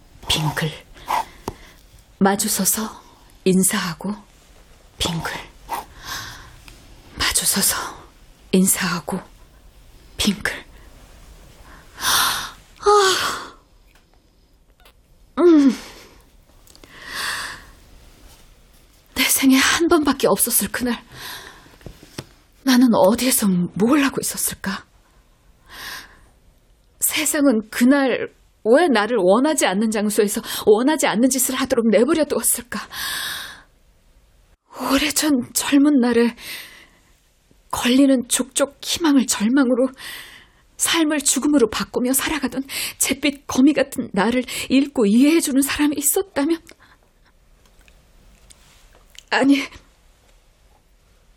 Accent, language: native, Korean